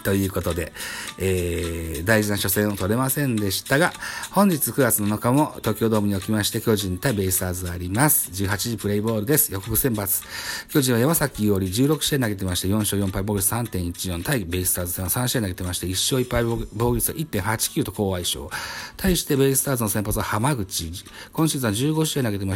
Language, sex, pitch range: Japanese, male, 95-125 Hz